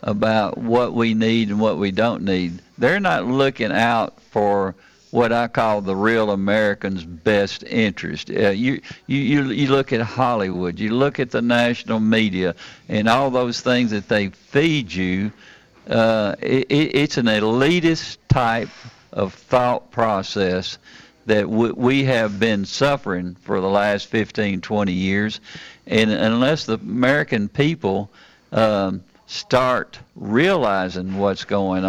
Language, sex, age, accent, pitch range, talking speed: English, male, 50-69, American, 100-120 Hz, 140 wpm